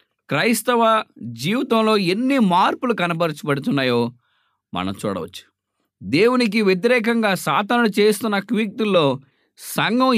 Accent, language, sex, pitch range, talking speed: Indian, English, male, 145-230 Hz, 135 wpm